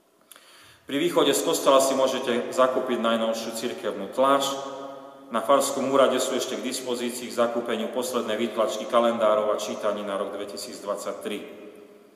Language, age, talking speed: Slovak, 30-49, 135 wpm